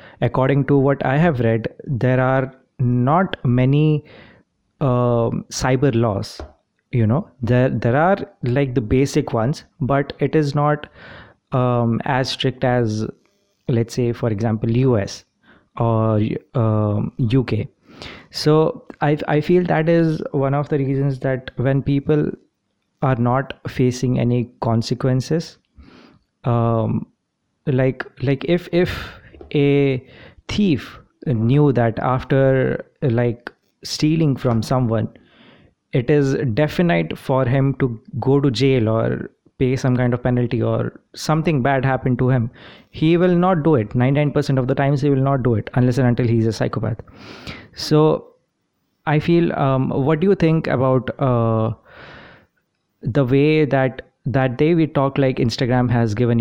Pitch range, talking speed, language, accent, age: 120-145 Hz, 140 wpm, English, Indian, 20-39